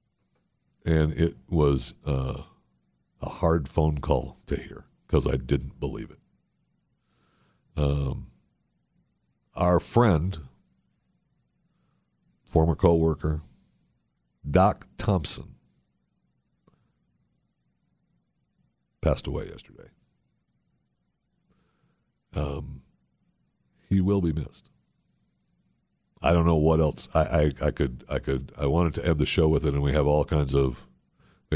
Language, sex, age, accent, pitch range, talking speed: English, male, 60-79, American, 70-80 Hz, 105 wpm